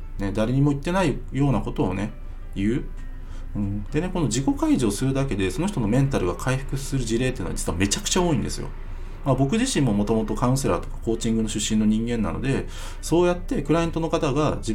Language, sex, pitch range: Japanese, male, 100-145 Hz